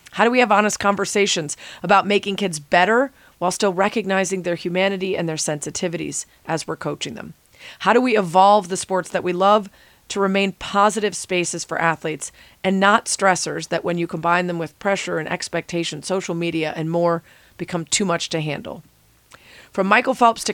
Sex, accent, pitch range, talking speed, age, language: female, American, 165-195 Hz, 180 wpm, 40-59, English